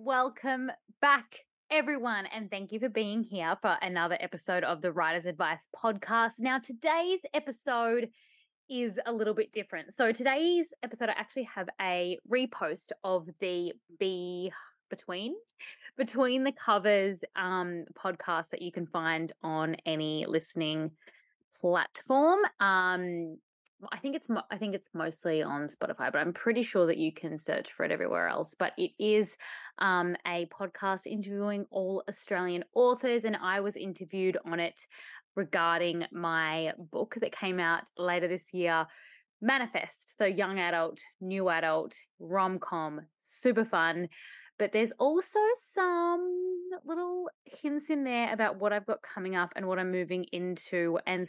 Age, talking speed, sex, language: 20-39, 150 wpm, female, English